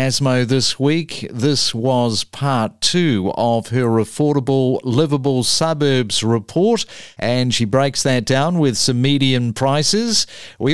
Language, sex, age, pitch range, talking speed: English, male, 50-69, 120-160 Hz, 125 wpm